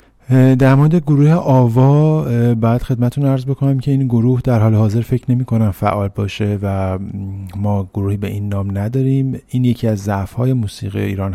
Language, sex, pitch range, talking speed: Persian, male, 100-120 Hz, 165 wpm